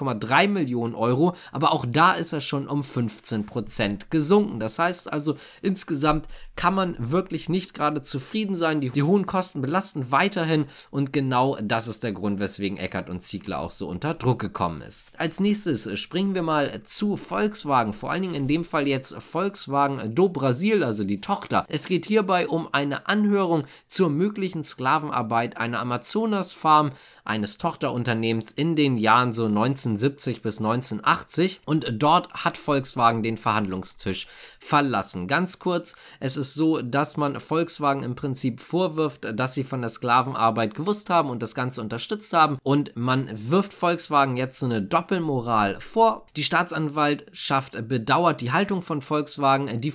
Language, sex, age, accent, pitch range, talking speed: German, male, 20-39, German, 120-165 Hz, 160 wpm